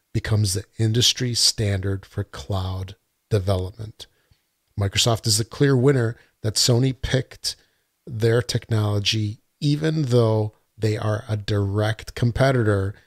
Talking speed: 110 wpm